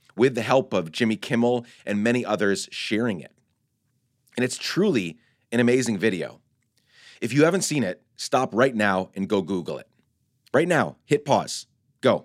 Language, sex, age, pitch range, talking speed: English, male, 30-49, 105-130 Hz, 165 wpm